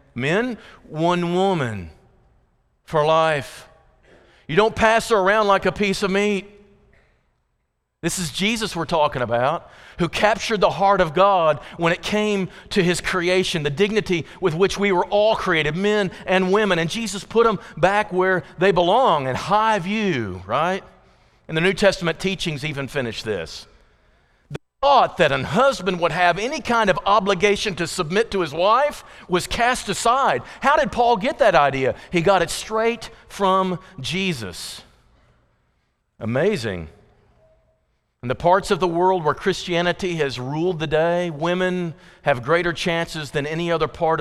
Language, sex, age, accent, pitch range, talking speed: English, male, 40-59, American, 155-200 Hz, 155 wpm